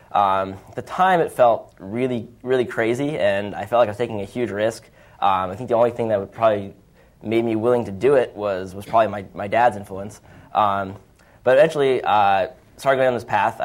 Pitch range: 100-115 Hz